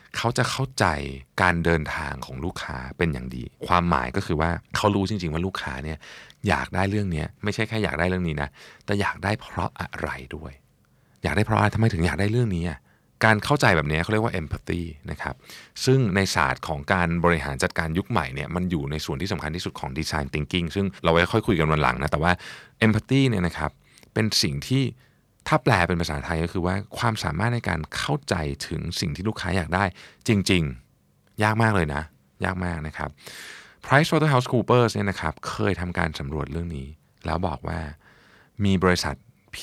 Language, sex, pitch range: Thai, male, 75-100 Hz